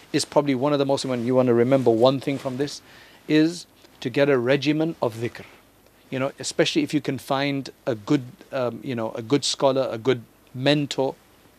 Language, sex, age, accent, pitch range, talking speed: English, male, 50-69, South African, 120-145 Hz, 205 wpm